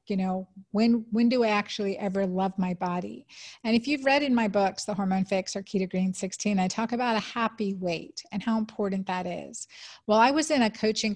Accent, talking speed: American, 225 wpm